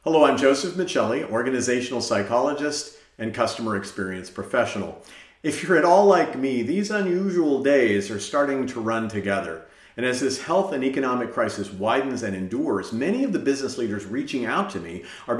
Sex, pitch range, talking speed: male, 100-140 Hz, 170 wpm